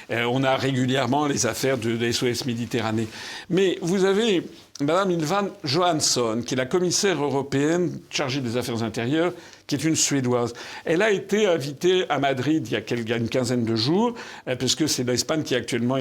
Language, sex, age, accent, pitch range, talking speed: French, male, 50-69, French, 125-185 Hz, 170 wpm